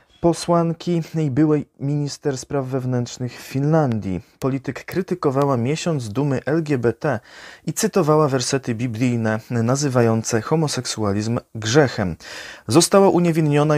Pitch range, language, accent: 120-155 Hz, Polish, native